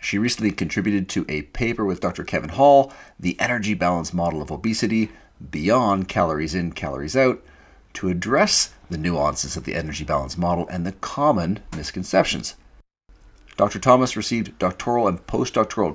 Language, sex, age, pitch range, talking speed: English, male, 40-59, 80-105 Hz, 150 wpm